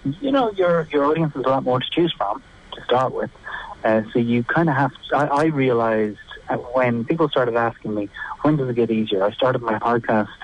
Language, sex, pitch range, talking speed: English, male, 105-130 Hz, 225 wpm